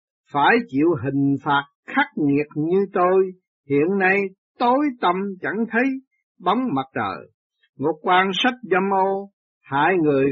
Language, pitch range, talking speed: Vietnamese, 155-240 Hz, 140 wpm